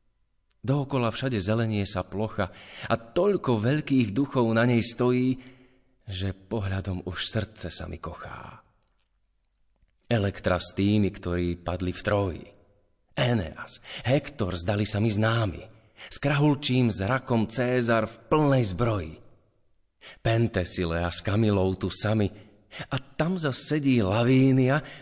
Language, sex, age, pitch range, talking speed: Slovak, male, 30-49, 95-130 Hz, 120 wpm